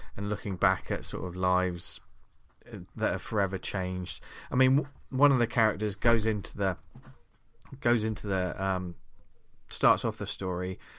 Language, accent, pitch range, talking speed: English, British, 100-125 Hz, 155 wpm